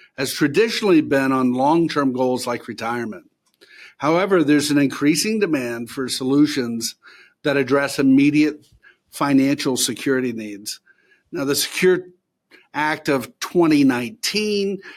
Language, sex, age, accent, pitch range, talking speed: English, male, 50-69, American, 130-150 Hz, 110 wpm